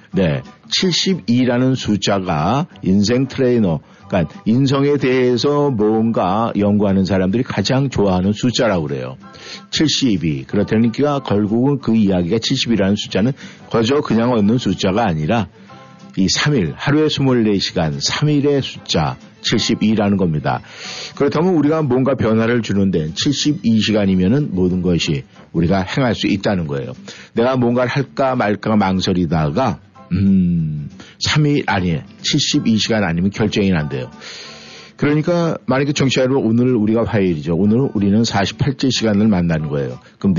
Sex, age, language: male, 50-69, Korean